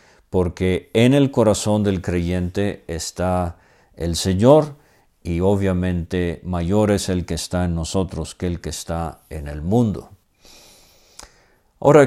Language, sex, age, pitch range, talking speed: English, male, 50-69, 85-105 Hz, 130 wpm